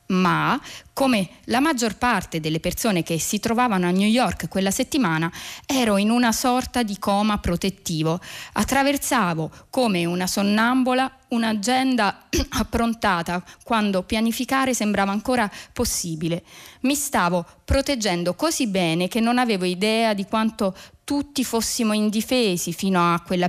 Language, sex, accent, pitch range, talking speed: Italian, female, native, 180-245 Hz, 130 wpm